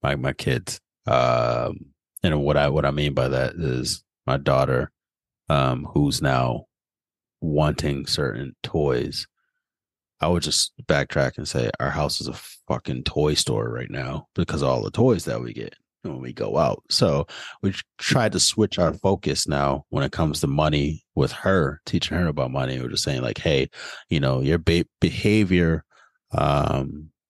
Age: 30-49